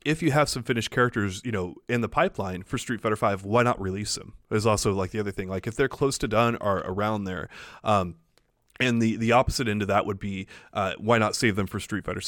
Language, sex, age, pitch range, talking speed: English, male, 30-49, 105-135 Hz, 255 wpm